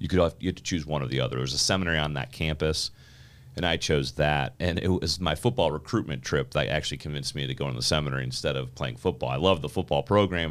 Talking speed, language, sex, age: 270 wpm, English, male, 40-59